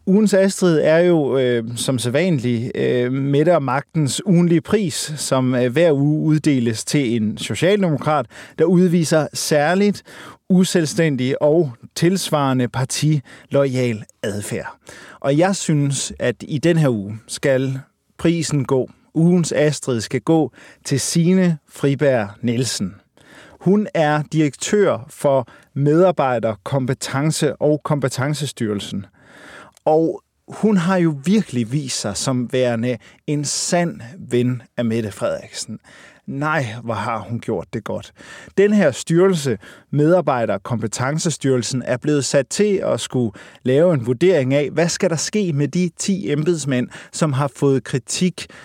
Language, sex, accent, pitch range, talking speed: Danish, male, native, 125-165 Hz, 130 wpm